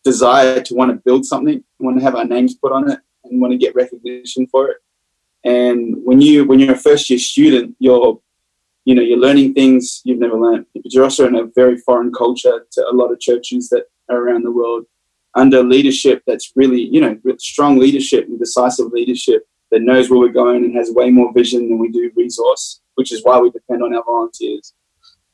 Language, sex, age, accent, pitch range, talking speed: English, male, 20-39, Australian, 120-140 Hz, 215 wpm